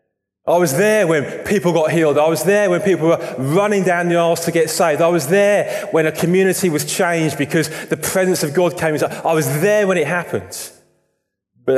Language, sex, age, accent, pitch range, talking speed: English, male, 20-39, British, 100-155 Hz, 215 wpm